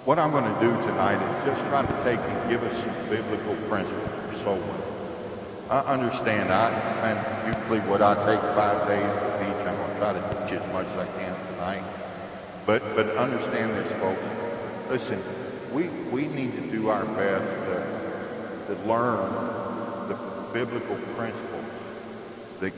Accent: American